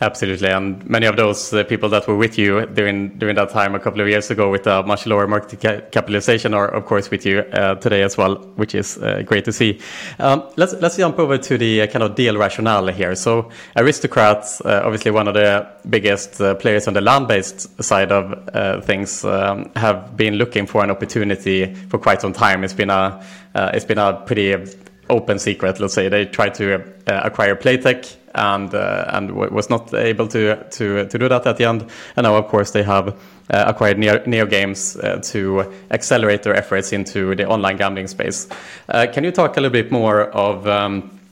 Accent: Norwegian